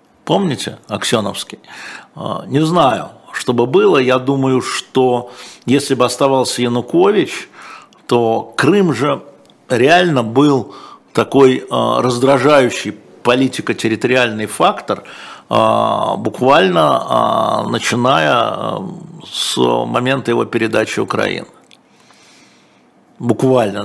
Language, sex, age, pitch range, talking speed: Russian, male, 50-69, 110-135 Hz, 80 wpm